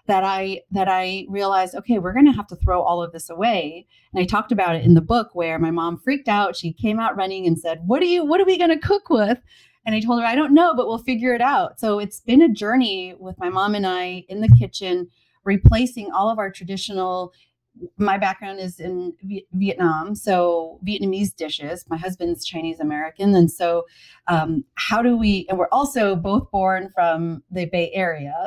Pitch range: 170-210 Hz